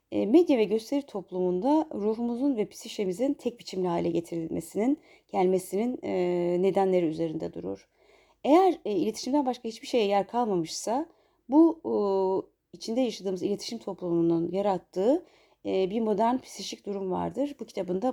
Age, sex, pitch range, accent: 30-49, female, 175-265 Hz, native